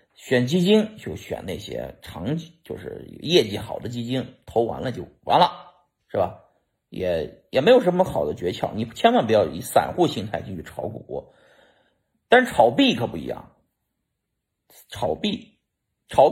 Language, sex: Chinese, male